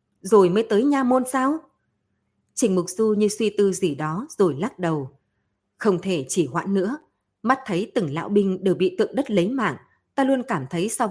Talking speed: 205 wpm